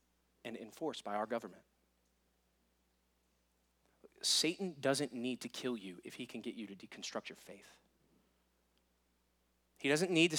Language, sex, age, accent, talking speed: English, male, 30-49, American, 140 wpm